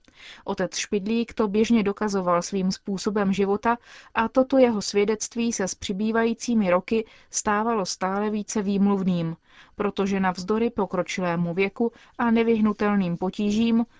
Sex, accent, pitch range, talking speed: female, native, 190-225 Hz, 115 wpm